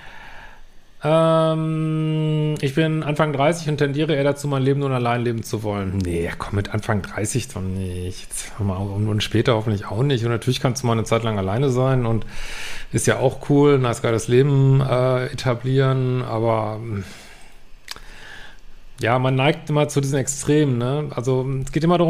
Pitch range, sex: 120-145 Hz, male